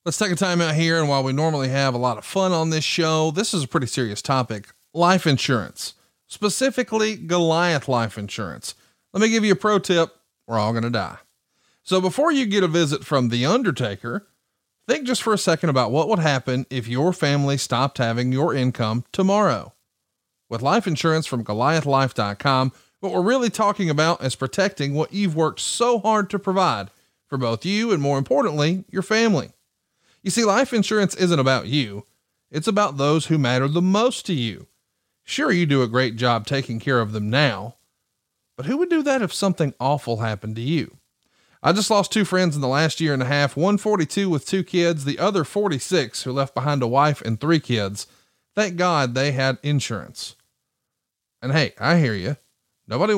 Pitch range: 130-190 Hz